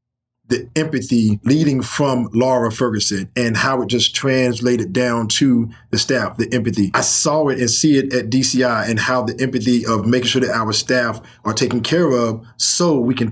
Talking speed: 190 wpm